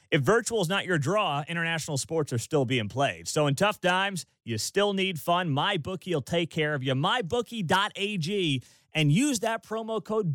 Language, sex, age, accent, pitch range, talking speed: English, male, 30-49, American, 140-195 Hz, 185 wpm